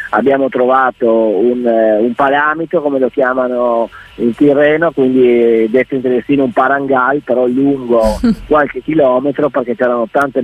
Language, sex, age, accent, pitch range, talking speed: Italian, male, 30-49, native, 115-140 Hz, 130 wpm